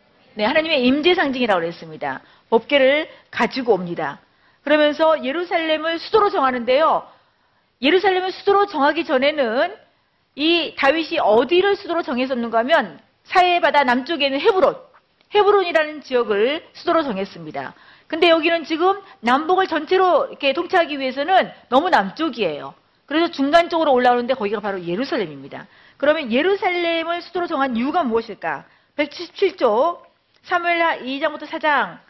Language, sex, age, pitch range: Korean, female, 40-59, 245-330 Hz